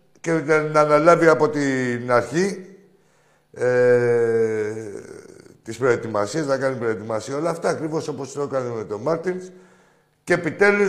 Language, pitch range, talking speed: Greek, 125-165 Hz, 125 wpm